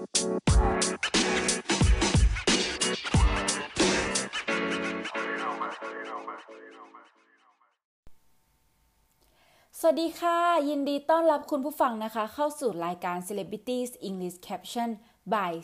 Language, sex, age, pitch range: Thai, female, 30-49, 175-235 Hz